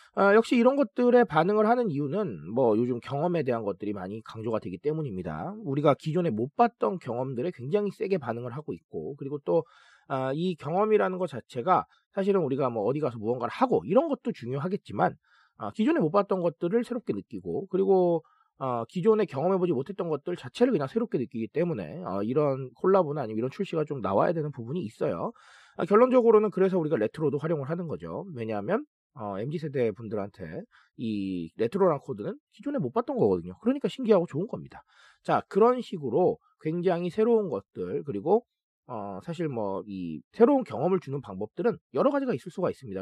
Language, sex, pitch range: Korean, male, 135-210 Hz